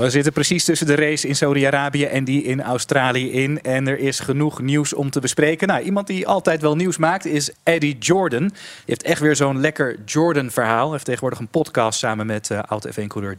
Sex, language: male, Dutch